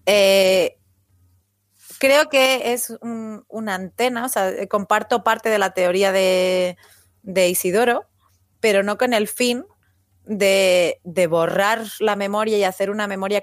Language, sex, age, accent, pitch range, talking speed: Spanish, female, 30-49, Spanish, 180-225 Hz, 140 wpm